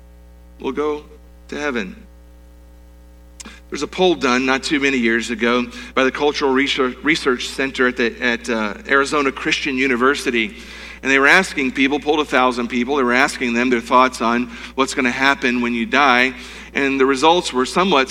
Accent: American